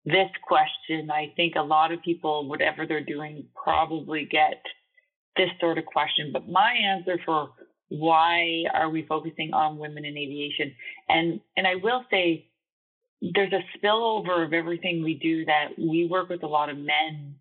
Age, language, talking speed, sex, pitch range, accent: 30-49, English, 170 wpm, female, 155-195 Hz, American